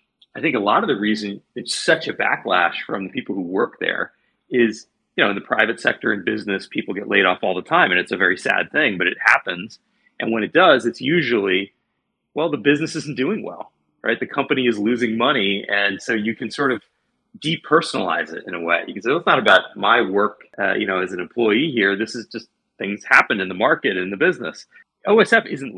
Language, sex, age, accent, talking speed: English, male, 30-49, American, 230 wpm